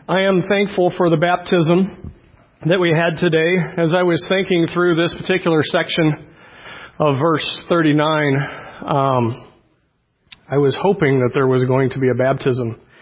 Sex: male